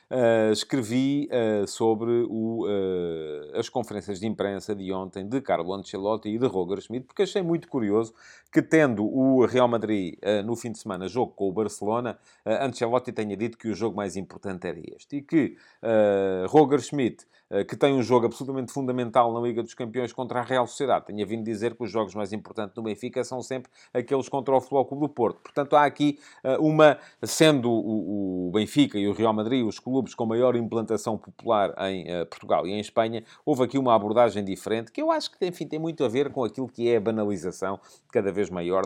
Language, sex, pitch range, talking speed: Portuguese, male, 100-125 Hz, 210 wpm